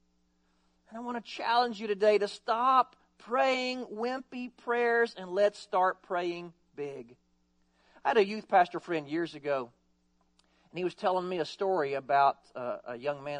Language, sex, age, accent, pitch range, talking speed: English, male, 40-59, American, 140-225 Hz, 165 wpm